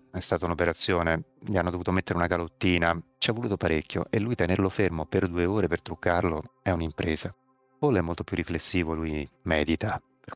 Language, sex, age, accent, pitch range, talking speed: Italian, male, 30-49, native, 85-120 Hz, 185 wpm